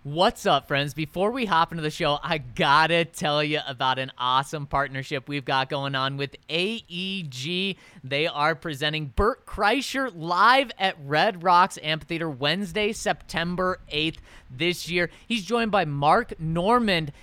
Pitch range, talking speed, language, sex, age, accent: 140-180 Hz, 155 wpm, English, male, 20-39, American